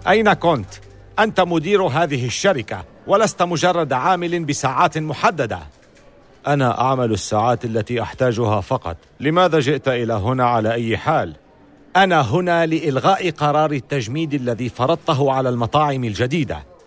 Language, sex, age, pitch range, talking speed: Arabic, male, 50-69, 115-155 Hz, 120 wpm